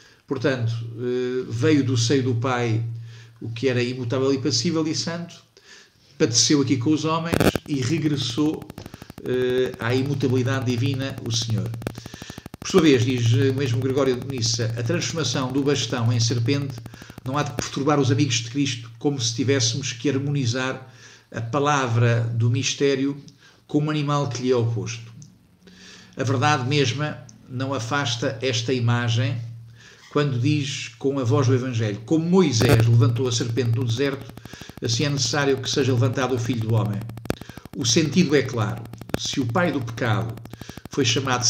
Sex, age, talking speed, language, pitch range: male, 50-69, 155 wpm, Portuguese, 120-140 Hz